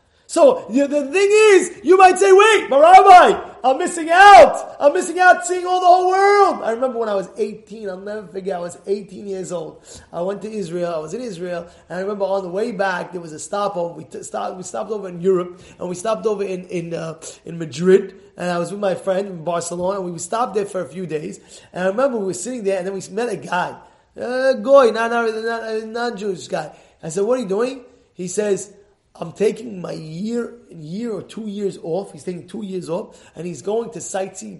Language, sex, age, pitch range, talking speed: English, male, 20-39, 185-265 Hz, 235 wpm